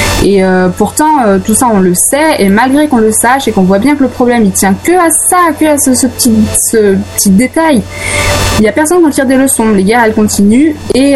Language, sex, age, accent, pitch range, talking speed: French, female, 20-39, French, 190-255 Hz, 260 wpm